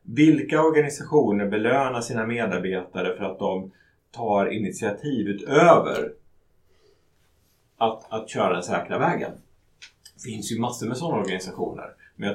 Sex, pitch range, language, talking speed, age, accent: male, 95-135 Hz, Swedish, 125 wpm, 30-49, Norwegian